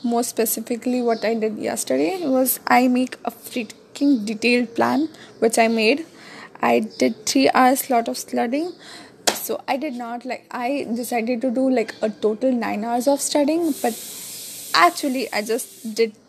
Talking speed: 160 wpm